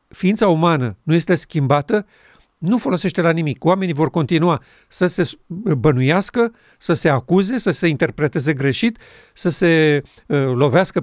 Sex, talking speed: male, 135 wpm